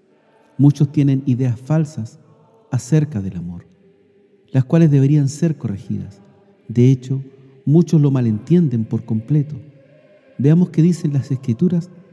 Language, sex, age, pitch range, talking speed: Spanish, male, 50-69, 120-170 Hz, 120 wpm